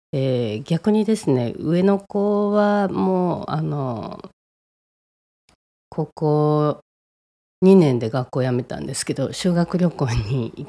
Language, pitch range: Japanese, 130-180 Hz